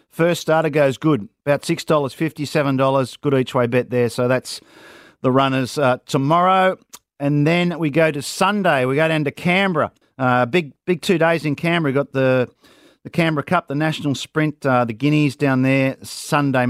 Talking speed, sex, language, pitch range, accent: 185 wpm, male, English, 125-155 Hz, Australian